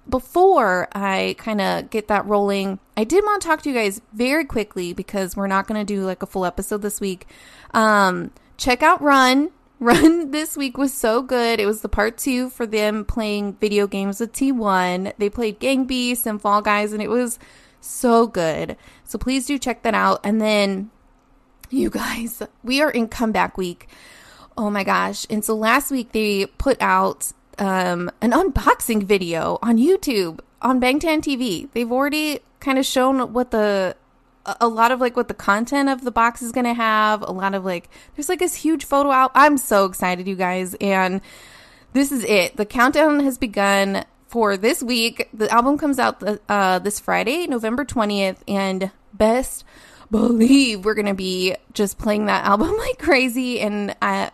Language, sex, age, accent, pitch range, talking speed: English, female, 20-39, American, 200-260 Hz, 185 wpm